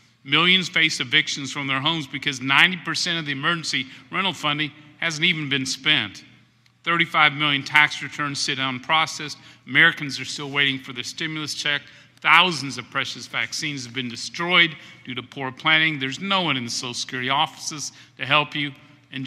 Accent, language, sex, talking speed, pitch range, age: American, English, male, 170 wpm, 130-155 Hz, 50-69